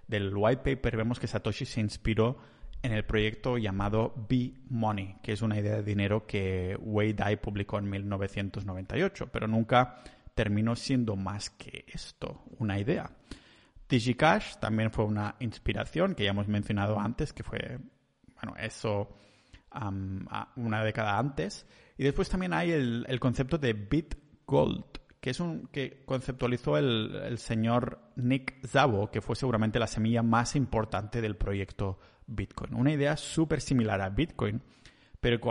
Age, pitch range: 30-49, 105-130 Hz